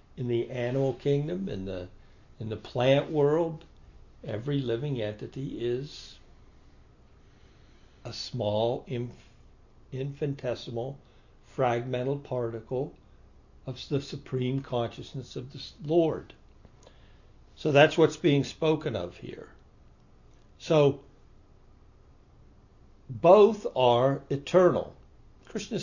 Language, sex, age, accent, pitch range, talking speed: English, male, 60-79, American, 110-140 Hz, 85 wpm